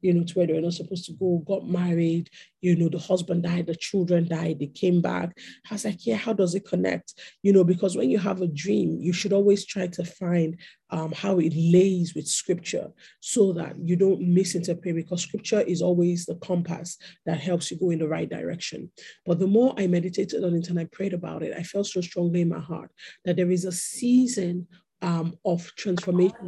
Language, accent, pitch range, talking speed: English, Nigerian, 170-195 Hz, 220 wpm